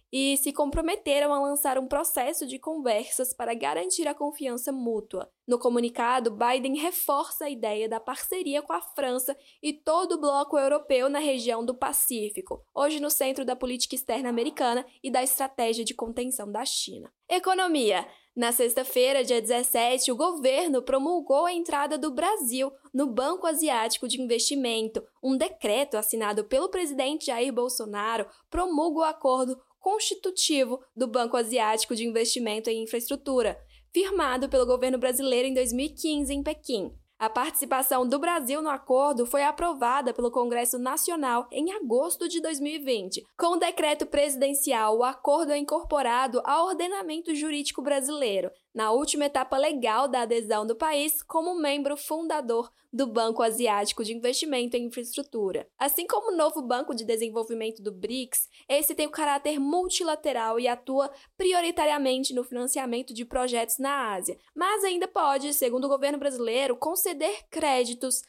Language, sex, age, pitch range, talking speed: Portuguese, female, 10-29, 245-305 Hz, 150 wpm